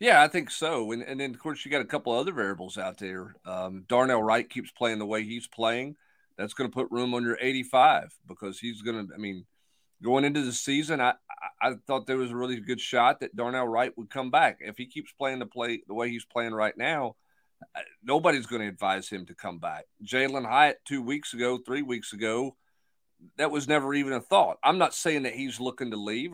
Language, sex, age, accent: English, male, 40-59, American